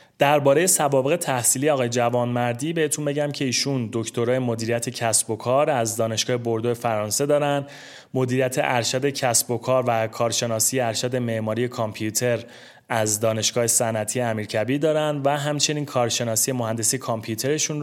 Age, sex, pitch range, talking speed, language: 30-49, male, 115-140 Hz, 130 wpm, Persian